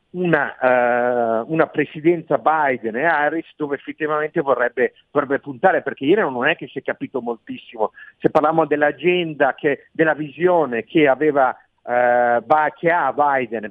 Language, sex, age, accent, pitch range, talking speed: Italian, male, 50-69, native, 130-170 Hz, 145 wpm